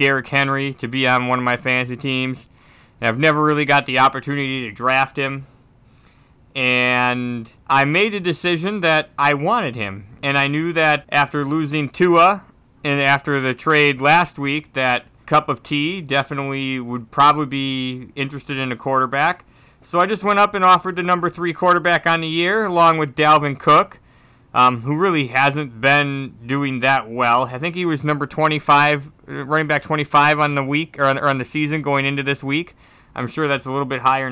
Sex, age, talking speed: male, 30-49, 190 wpm